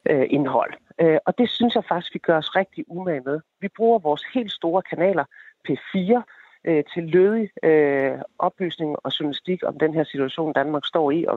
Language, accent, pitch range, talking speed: Danish, native, 150-195 Hz, 170 wpm